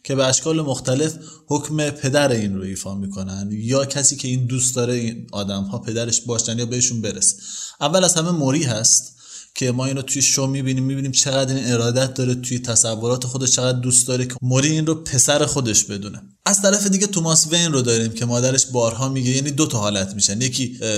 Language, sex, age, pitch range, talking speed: Persian, male, 20-39, 120-140 Hz, 205 wpm